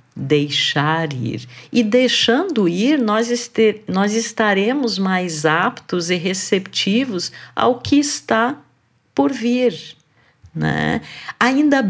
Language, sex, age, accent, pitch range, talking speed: Portuguese, female, 50-69, Brazilian, 155-225 Hz, 95 wpm